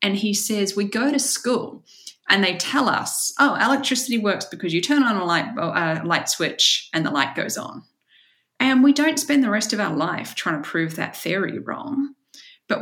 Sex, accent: female, Australian